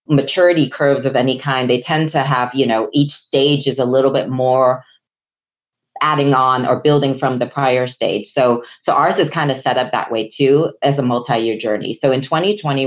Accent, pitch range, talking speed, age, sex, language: American, 125-150 Hz, 205 wpm, 30-49, female, English